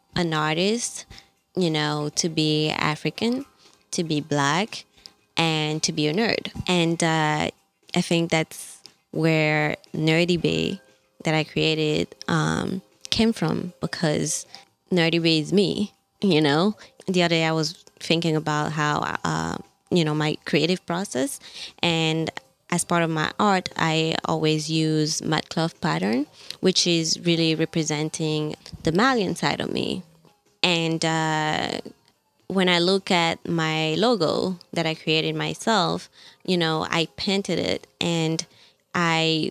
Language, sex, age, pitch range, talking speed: English, female, 20-39, 155-180 Hz, 135 wpm